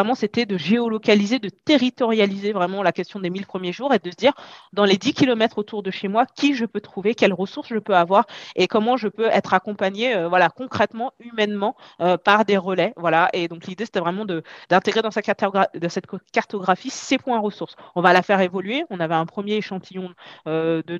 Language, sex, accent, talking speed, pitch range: French, female, French, 215 wpm, 180-225 Hz